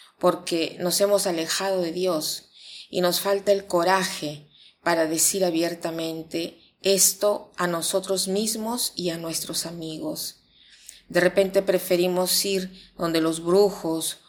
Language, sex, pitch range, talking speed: Spanish, female, 165-190 Hz, 120 wpm